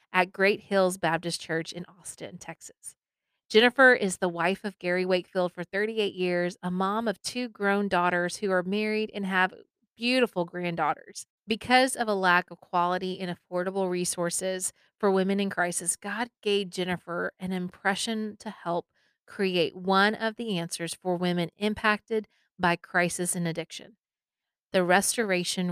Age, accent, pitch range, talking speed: 30-49, American, 175-205 Hz, 150 wpm